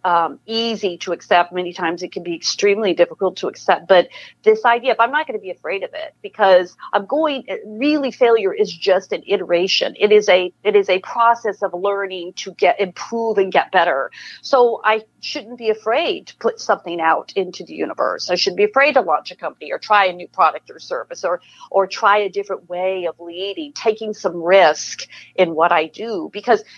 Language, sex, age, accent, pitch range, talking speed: English, female, 50-69, American, 180-240 Hz, 205 wpm